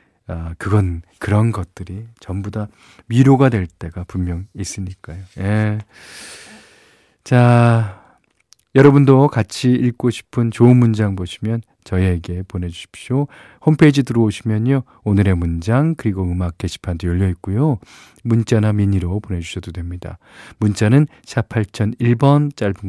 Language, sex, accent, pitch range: Korean, male, native, 95-120 Hz